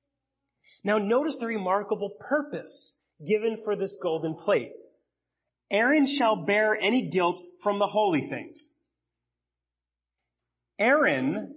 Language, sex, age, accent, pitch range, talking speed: English, male, 30-49, American, 215-305 Hz, 105 wpm